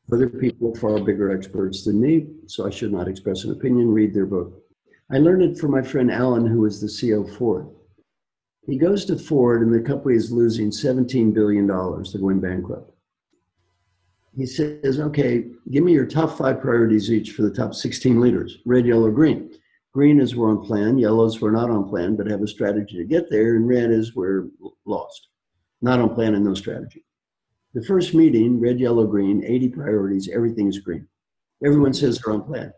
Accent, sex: American, male